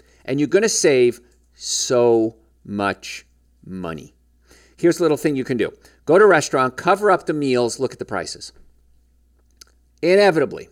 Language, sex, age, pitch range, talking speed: English, male, 40-59, 105-145 Hz, 155 wpm